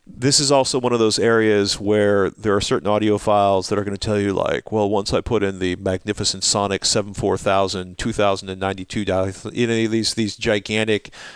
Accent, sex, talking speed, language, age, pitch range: American, male, 180 wpm, English, 40-59, 95-105 Hz